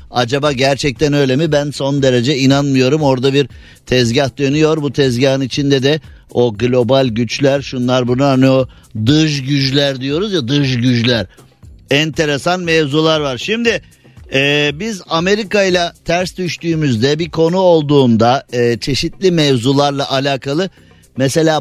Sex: male